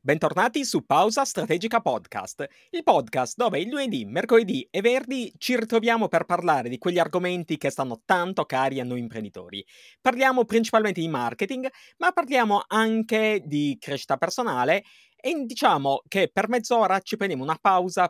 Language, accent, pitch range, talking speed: Italian, native, 140-215 Hz, 155 wpm